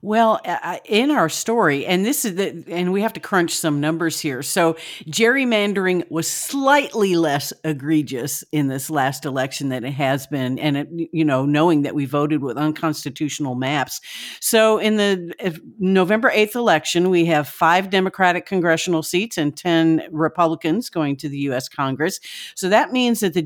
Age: 50-69